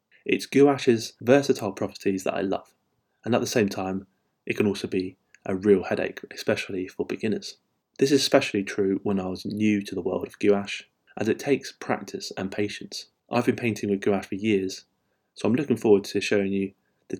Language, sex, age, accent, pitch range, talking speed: English, male, 20-39, British, 100-115 Hz, 195 wpm